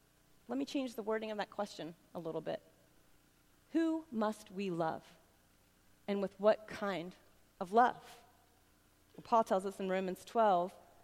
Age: 30-49